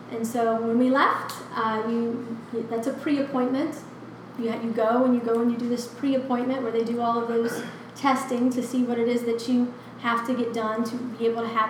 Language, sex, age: English, female, 30-49